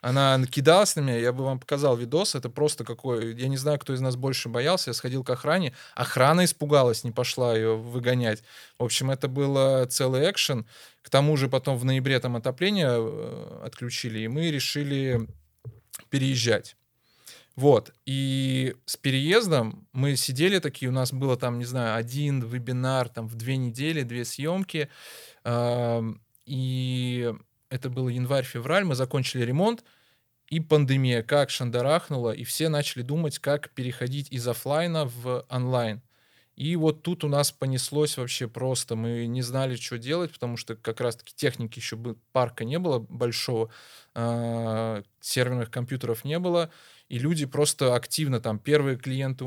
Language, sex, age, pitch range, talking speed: Russian, male, 20-39, 120-140 Hz, 155 wpm